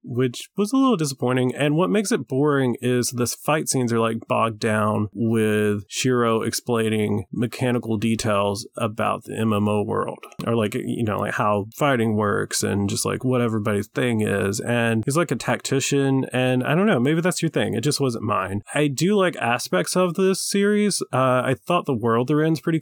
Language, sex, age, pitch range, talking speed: English, male, 30-49, 110-140 Hz, 195 wpm